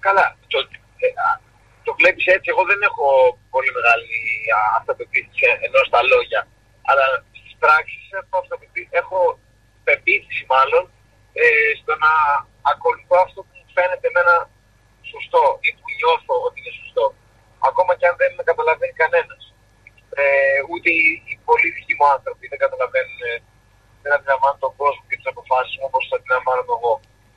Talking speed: 140 wpm